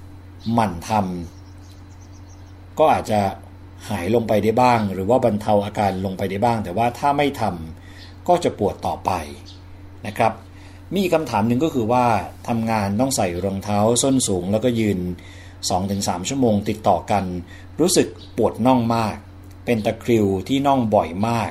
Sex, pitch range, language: male, 95-120 Hz, Thai